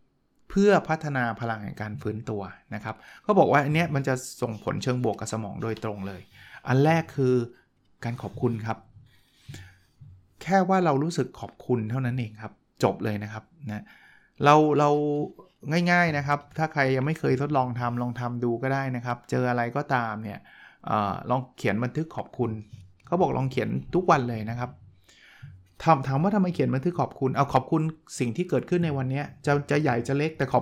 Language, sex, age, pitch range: Thai, male, 20-39, 115-150 Hz